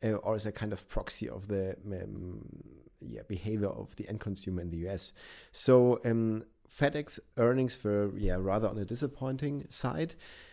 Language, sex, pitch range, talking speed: English, male, 95-115 Hz, 170 wpm